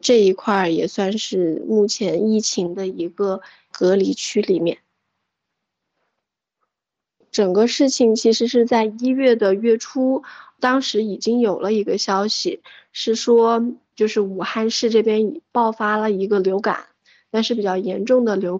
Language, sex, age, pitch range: Chinese, female, 20-39, 195-235 Hz